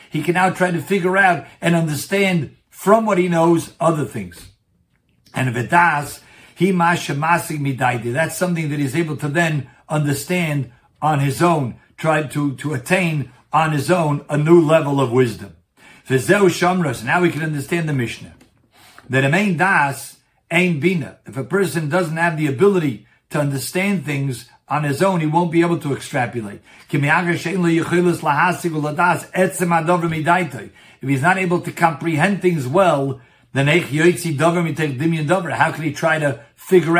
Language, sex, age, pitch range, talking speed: English, male, 60-79, 140-175 Hz, 140 wpm